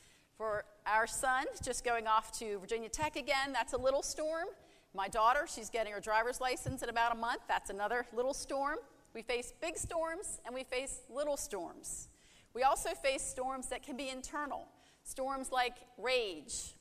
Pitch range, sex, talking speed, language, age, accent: 195-275 Hz, female, 175 wpm, English, 40-59, American